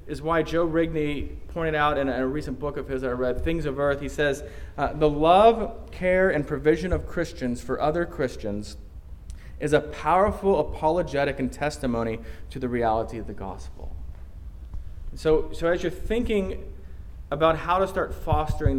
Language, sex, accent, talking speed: English, male, American, 165 wpm